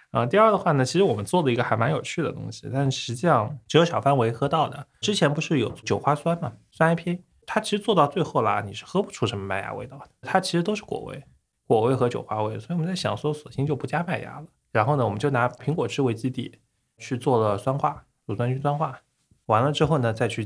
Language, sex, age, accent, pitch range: Chinese, male, 20-39, native, 105-140 Hz